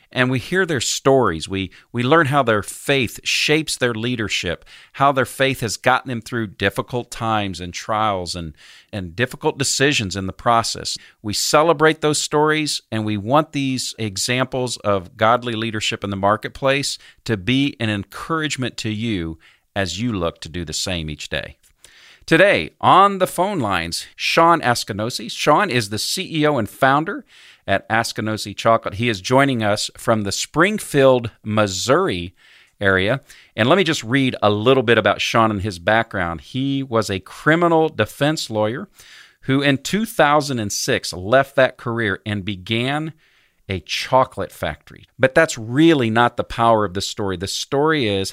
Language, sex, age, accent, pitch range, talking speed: English, male, 50-69, American, 100-135 Hz, 160 wpm